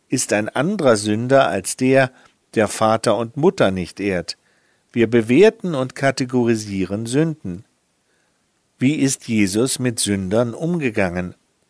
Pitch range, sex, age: 110-150 Hz, male, 50-69